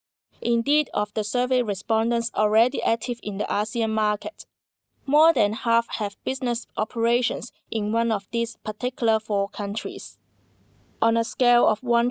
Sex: female